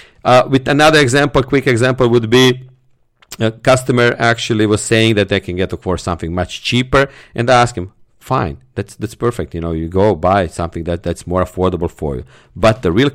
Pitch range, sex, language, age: 95-120 Hz, male, English, 50-69